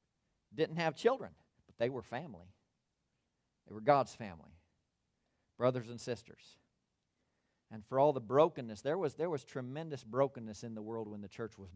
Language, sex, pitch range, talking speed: English, male, 105-130 Hz, 165 wpm